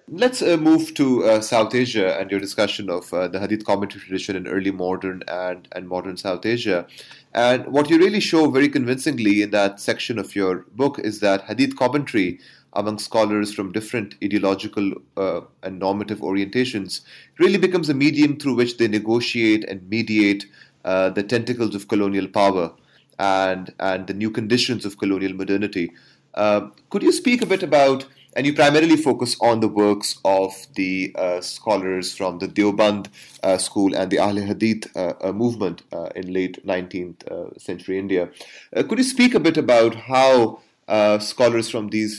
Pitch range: 95-120 Hz